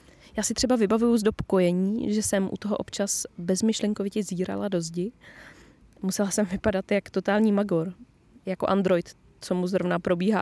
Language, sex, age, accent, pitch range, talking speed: Czech, female, 20-39, native, 180-215 Hz, 155 wpm